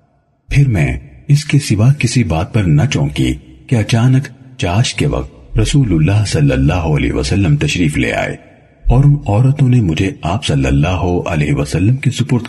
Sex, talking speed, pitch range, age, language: male, 155 wpm, 105-140 Hz, 50-69, Urdu